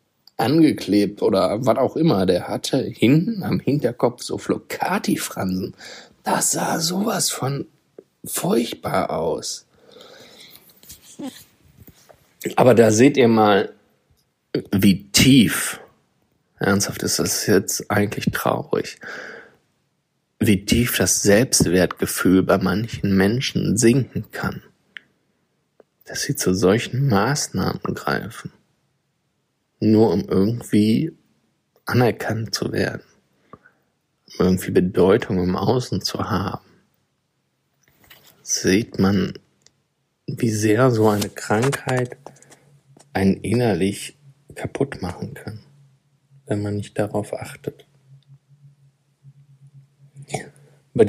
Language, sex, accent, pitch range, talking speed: German, male, German, 105-140 Hz, 90 wpm